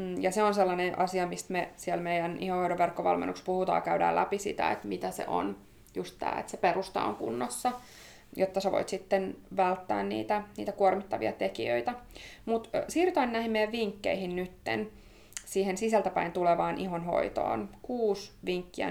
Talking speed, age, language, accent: 145 wpm, 20-39, Finnish, native